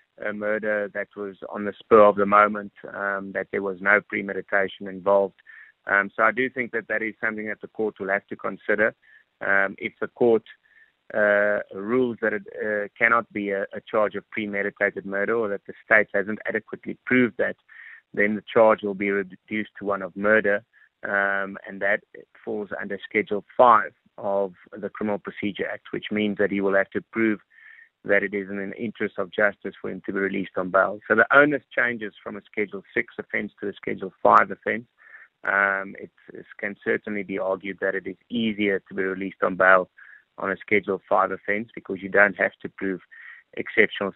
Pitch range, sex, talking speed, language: 95-105 Hz, male, 195 wpm, English